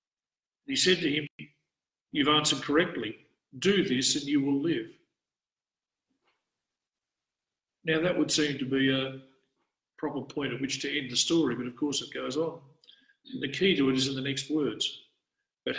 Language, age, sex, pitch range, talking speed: English, 50-69, male, 140-185 Hz, 165 wpm